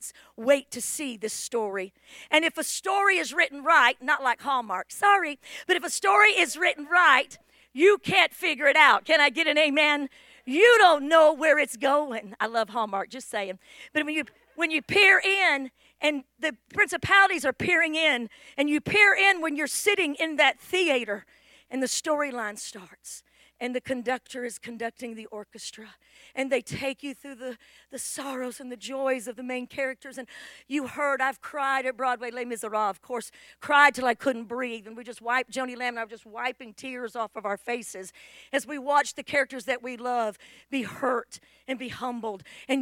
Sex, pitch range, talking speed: female, 235-290 Hz, 195 wpm